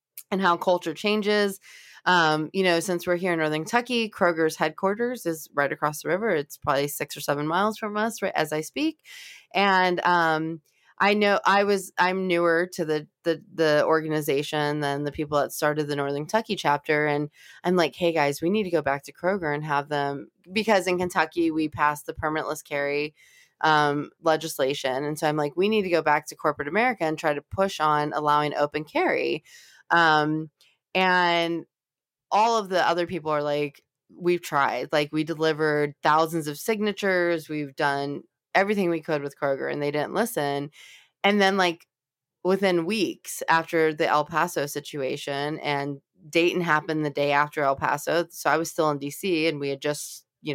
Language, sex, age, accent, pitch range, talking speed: English, female, 20-39, American, 150-180 Hz, 185 wpm